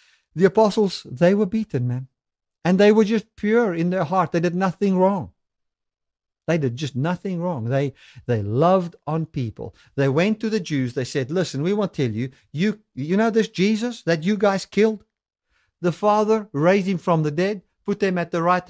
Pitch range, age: 150-205 Hz, 50-69